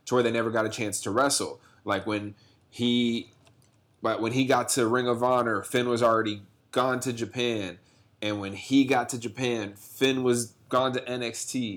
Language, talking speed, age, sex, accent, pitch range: English, 180 wpm, 20-39, male, American, 110-140 Hz